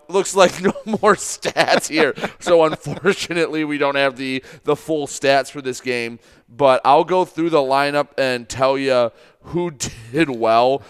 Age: 30-49